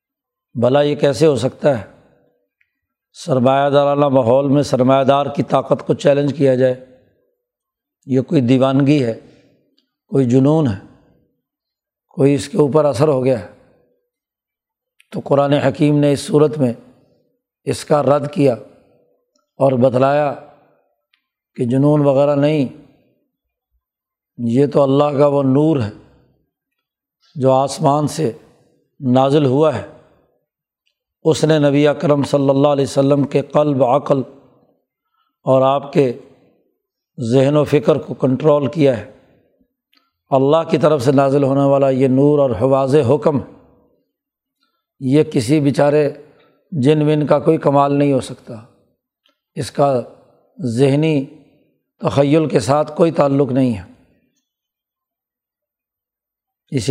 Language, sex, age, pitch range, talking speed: Urdu, male, 60-79, 135-150 Hz, 125 wpm